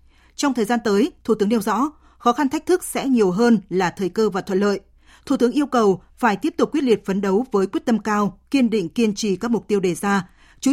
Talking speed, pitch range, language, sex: 255 wpm, 195-245 Hz, Vietnamese, female